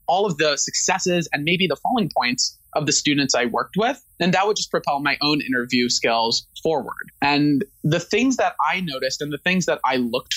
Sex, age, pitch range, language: male, 20-39, 140-205 Hz, English